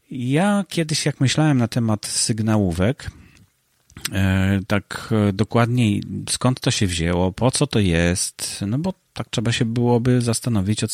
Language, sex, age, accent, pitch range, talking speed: Polish, male, 40-59, native, 105-135 Hz, 135 wpm